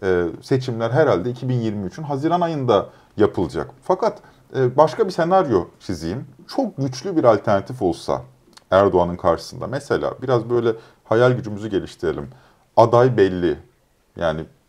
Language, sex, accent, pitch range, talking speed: Turkish, male, native, 100-130 Hz, 110 wpm